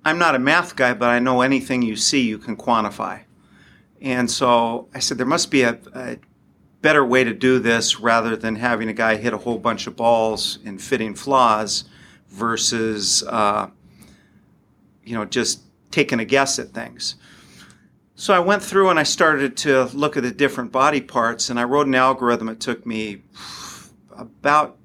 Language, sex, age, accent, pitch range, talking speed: English, male, 40-59, American, 110-130 Hz, 180 wpm